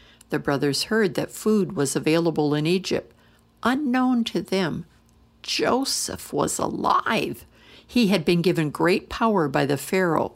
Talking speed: 140 wpm